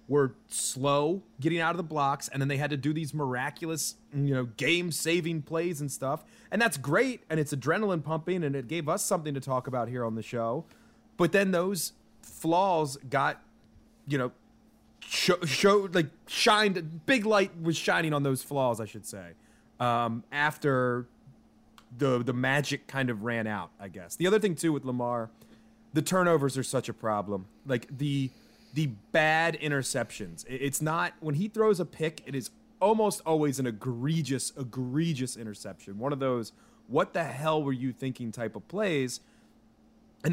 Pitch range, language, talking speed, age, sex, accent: 125-160 Hz, English, 175 wpm, 30-49, male, American